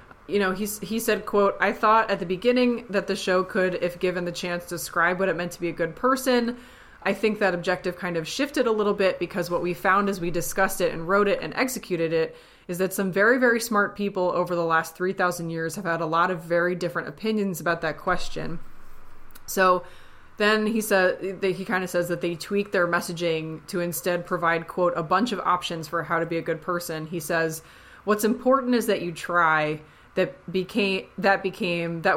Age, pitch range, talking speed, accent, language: 20-39, 170-200 Hz, 215 wpm, American, English